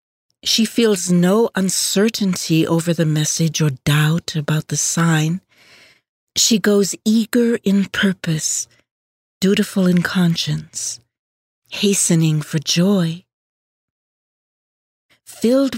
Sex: female